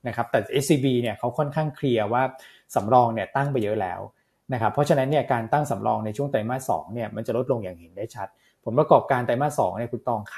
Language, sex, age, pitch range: Thai, male, 20-39, 110-140 Hz